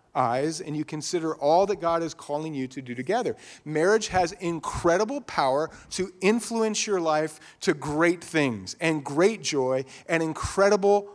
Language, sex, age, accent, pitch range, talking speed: English, male, 40-59, American, 150-190 Hz, 155 wpm